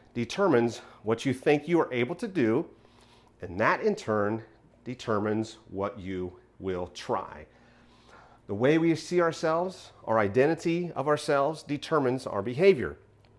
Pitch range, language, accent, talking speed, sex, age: 110-140 Hz, English, American, 135 wpm, male, 40-59